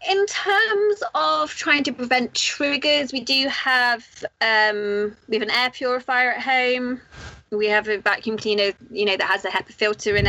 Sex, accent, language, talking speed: female, British, English, 180 wpm